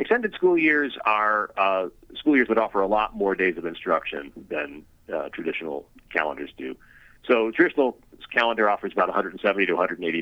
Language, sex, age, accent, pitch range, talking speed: English, male, 40-59, American, 100-130 Hz, 160 wpm